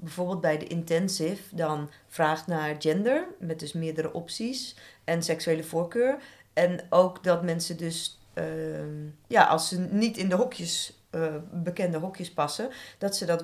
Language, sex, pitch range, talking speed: Dutch, female, 150-180 Hz, 150 wpm